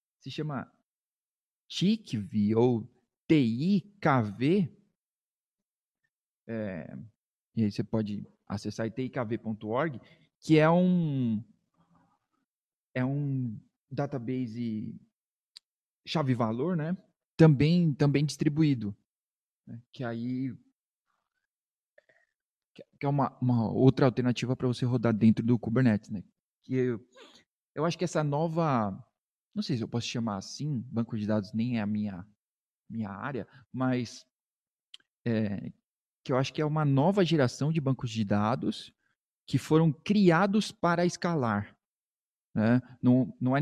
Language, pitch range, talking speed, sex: Portuguese, 115-145 Hz, 115 wpm, male